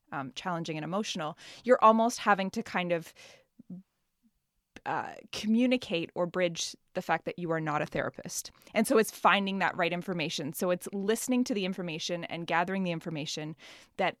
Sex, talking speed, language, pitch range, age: female, 170 wpm, English, 170-205 Hz, 20-39